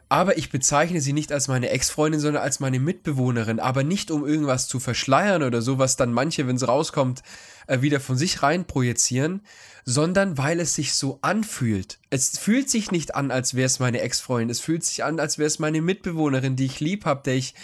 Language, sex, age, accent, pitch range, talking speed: German, male, 10-29, German, 130-165 Hz, 205 wpm